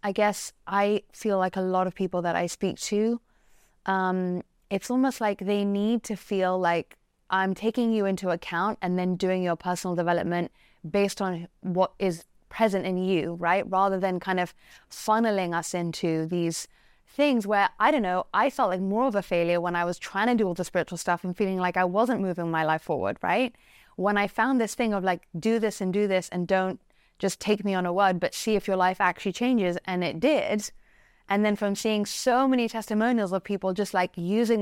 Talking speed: 215 wpm